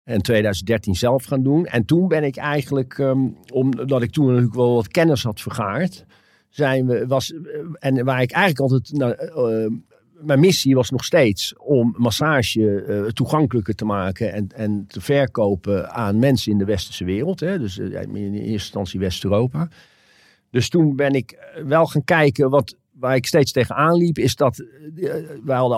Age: 50-69